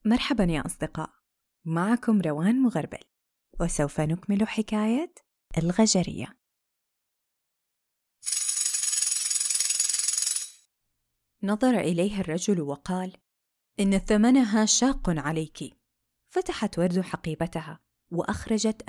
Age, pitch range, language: 30-49, 165-220 Hz, Arabic